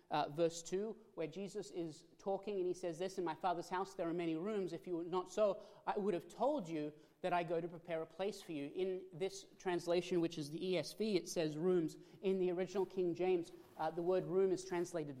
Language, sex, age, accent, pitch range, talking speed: English, male, 30-49, Australian, 170-195 Hz, 235 wpm